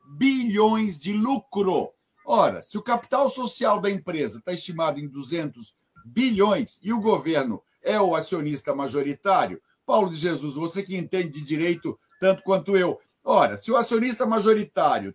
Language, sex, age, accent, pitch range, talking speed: Portuguese, male, 60-79, Brazilian, 170-225 Hz, 150 wpm